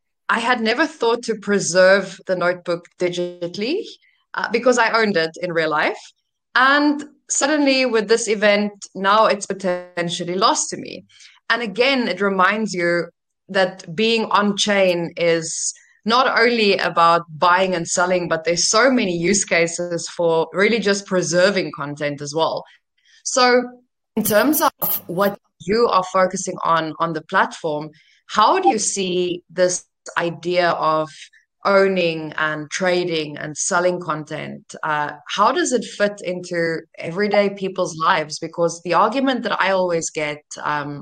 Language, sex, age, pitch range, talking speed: English, female, 20-39, 165-210 Hz, 145 wpm